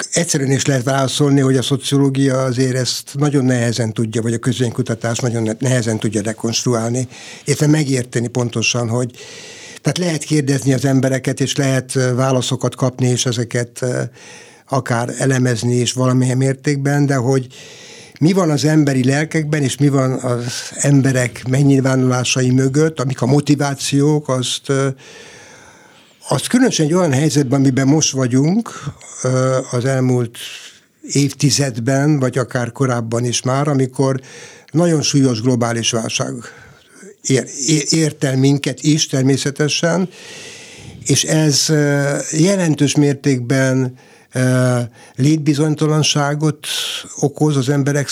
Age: 60-79